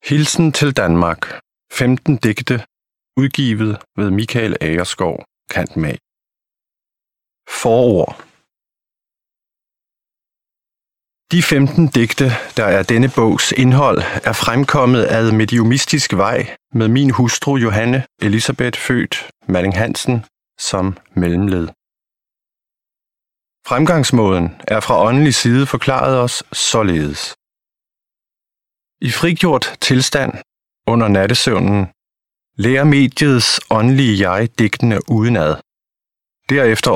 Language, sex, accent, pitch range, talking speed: Danish, male, native, 100-130 Hz, 90 wpm